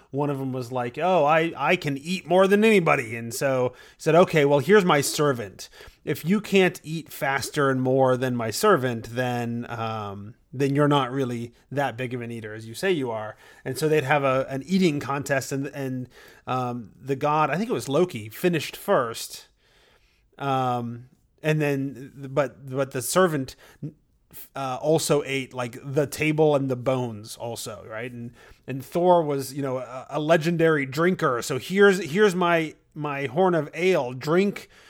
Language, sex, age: English, male, 30-49